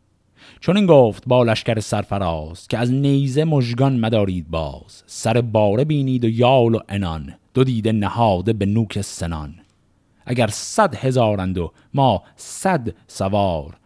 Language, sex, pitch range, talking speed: Persian, male, 100-130 Hz, 140 wpm